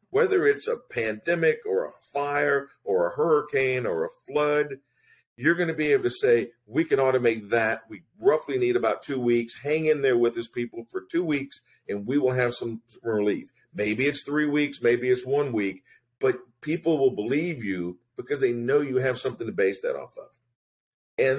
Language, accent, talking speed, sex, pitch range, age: English, American, 195 wpm, male, 115-190 Hz, 50-69